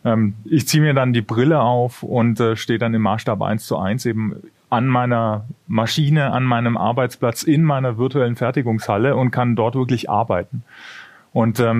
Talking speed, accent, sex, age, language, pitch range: 165 wpm, German, male, 30-49, German, 115-145 Hz